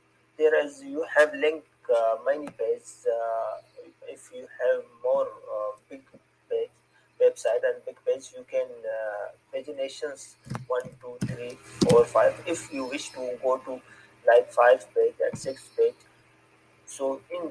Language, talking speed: English, 145 wpm